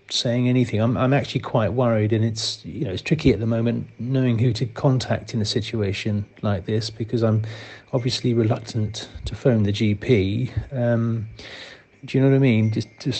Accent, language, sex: British, English, male